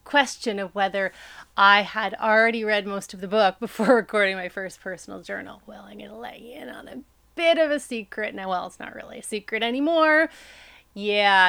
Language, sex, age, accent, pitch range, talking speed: English, female, 30-49, American, 195-230 Hz, 205 wpm